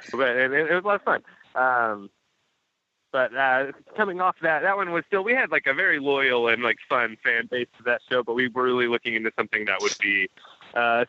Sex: male